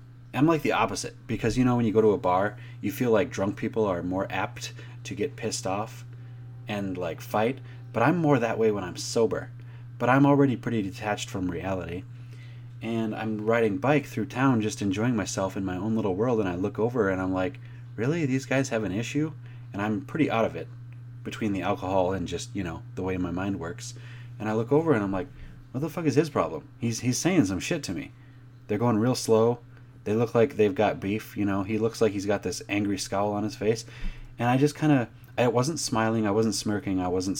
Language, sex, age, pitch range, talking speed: English, male, 30-49, 105-125 Hz, 230 wpm